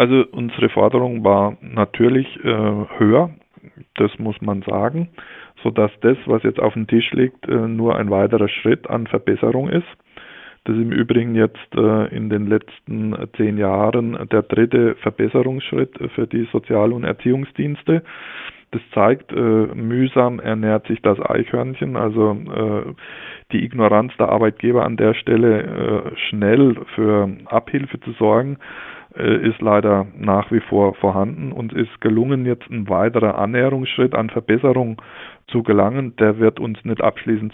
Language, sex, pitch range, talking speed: German, male, 105-120 Hz, 135 wpm